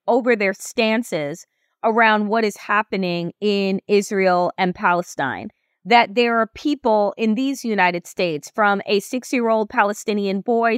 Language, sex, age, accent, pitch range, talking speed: English, female, 30-49, American, 225-345 Hz, 135 wpm